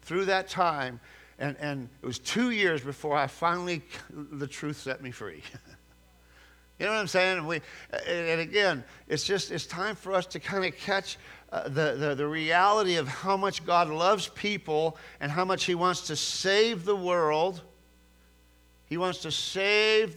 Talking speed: 165 wpm